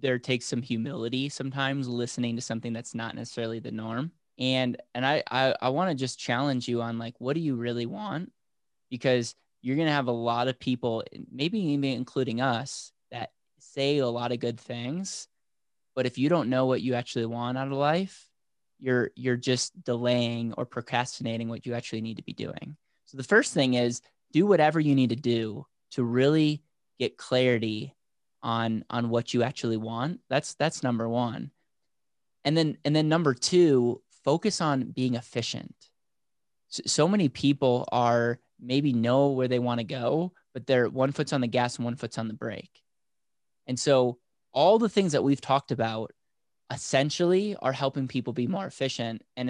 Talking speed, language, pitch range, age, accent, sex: 180 wpm, English, 120-135 Hz, 20-39, American, male